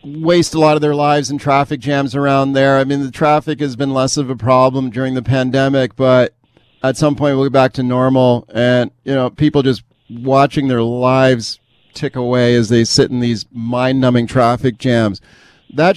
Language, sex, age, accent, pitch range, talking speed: English, male, 40-59, American, 125-145 Hz, 195 wpm